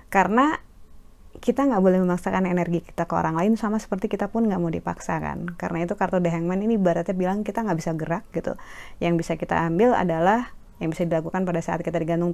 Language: Indonesian